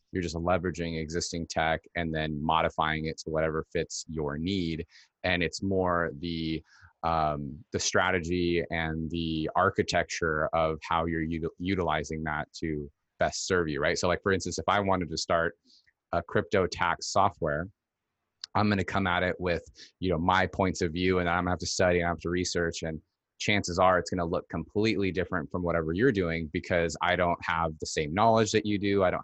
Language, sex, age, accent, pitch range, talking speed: English, male, 30-49, American, 80-95 Hz, 195 wpm